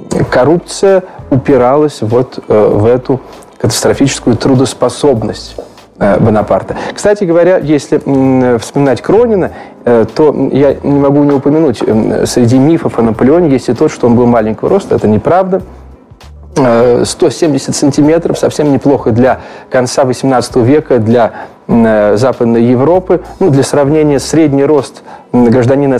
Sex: male